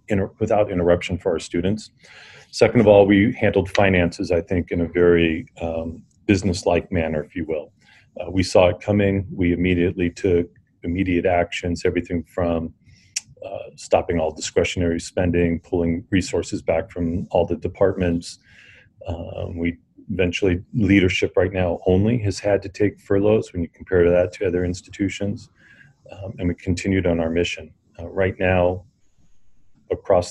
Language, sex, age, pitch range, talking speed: English, male, 40-59, 85-100 Hz, 150 wpm